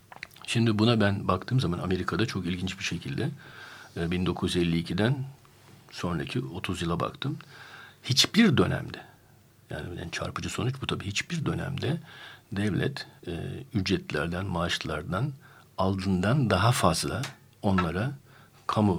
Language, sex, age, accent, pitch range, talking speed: Turkish, male, 60-79, native, 90-130 Hz, 100 wpm